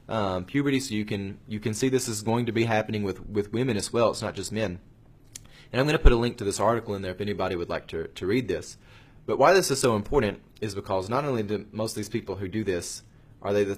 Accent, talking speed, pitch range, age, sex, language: American, 275 wpm, 100-120 Hz, 20-39, male, English